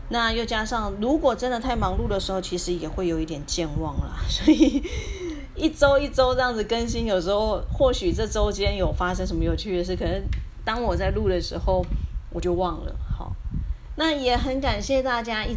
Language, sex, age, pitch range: Chinese, female, 30-49, 175-255 Hz